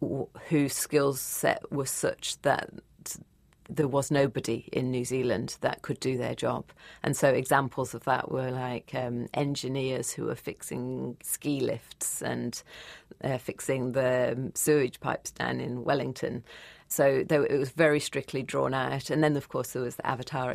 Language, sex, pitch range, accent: English, female, 130-145 Hz, British